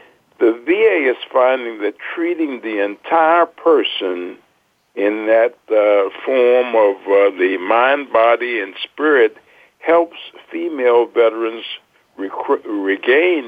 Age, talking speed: 60-79, 105 wpm